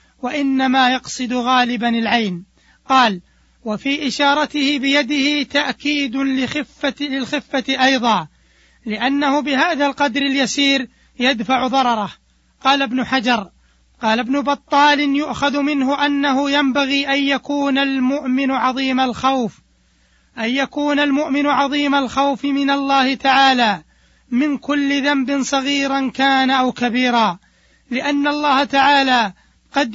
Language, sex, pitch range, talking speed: Arabic, male, 245-280 Hz, 100 wpm